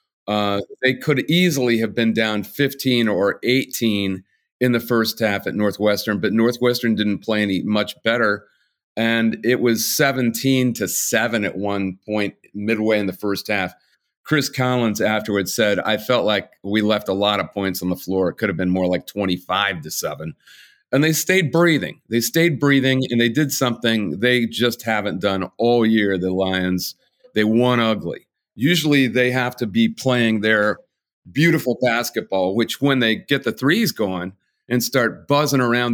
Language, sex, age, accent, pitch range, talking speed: English, male, 40-59, American, 105-130 Hz, 175 wpm